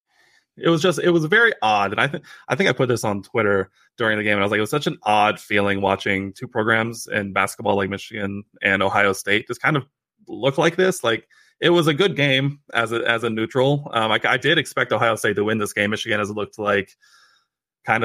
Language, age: English, 20-39